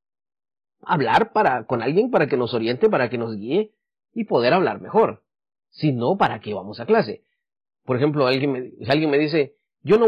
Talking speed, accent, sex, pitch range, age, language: 195 wpm, Mexican, male, 150-210 Hz, 40-59, English